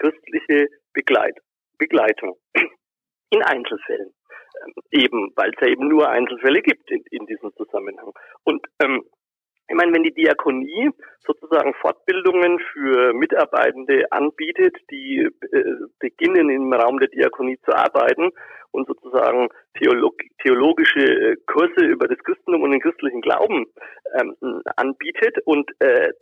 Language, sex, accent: German, male, German